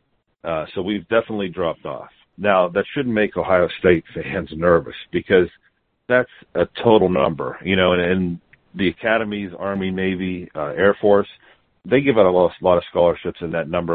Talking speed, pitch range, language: 185 wpm, 85-100 Hz, English